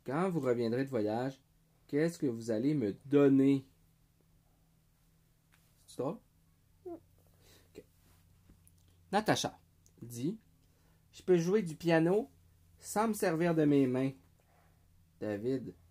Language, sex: French, male